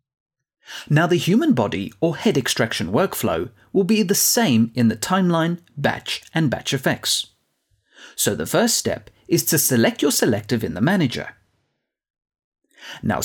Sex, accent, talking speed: male, British, 145 wpm